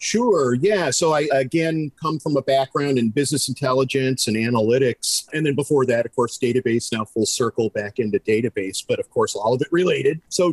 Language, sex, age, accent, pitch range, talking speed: English, male, 50-69, American, 125-155 Hz, 200 wpm